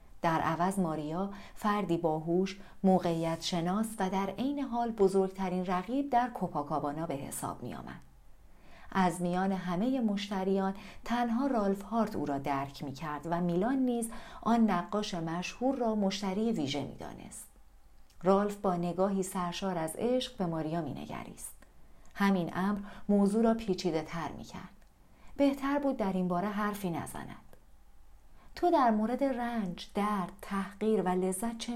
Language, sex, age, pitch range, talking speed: Persian, female, 40-59, 175-225 Hz, 145 wpm